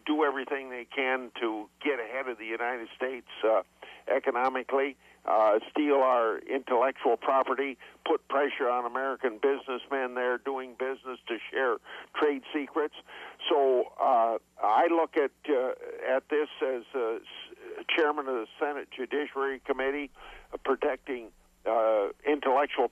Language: English